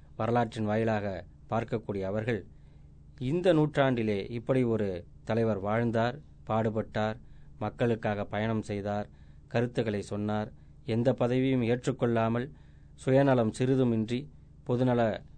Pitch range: 90-120 Hz